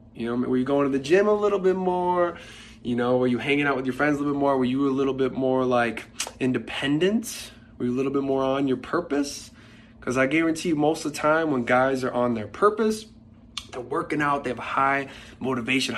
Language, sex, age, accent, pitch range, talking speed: English, male, 20-39, American, 115-145 Hz, 240 wpm